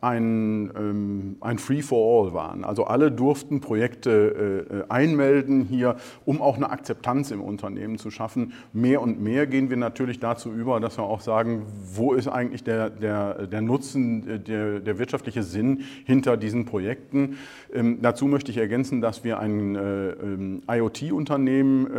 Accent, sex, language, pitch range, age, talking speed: German, male, German, 110-130 Hz, 40-59, 145 wpm